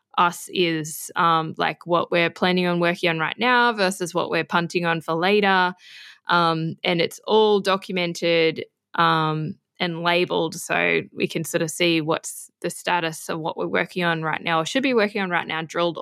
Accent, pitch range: Australian, 165-195 Hz